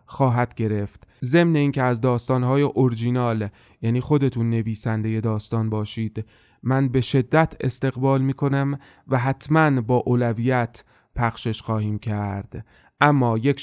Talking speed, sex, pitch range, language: 120 wpm, male, 115-140 Hz, Persian